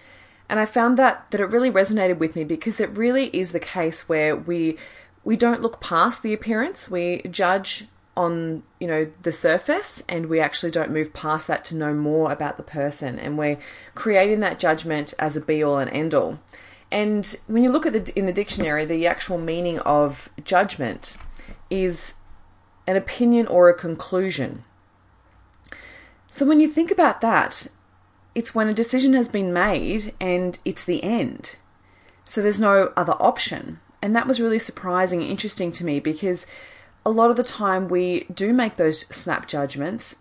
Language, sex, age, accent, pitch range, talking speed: English, female, 20-39, Australian, 155-215 Hz, 180 wpm